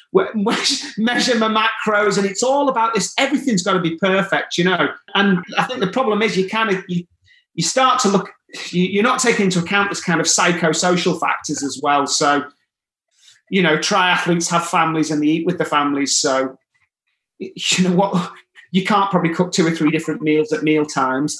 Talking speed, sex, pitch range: 190 wpm, male, 155-210 Hz